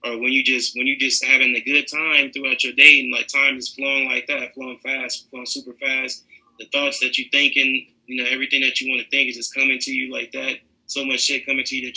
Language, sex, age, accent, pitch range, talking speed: English, male, 20-39, American, 120-135 Hz, 265 wpm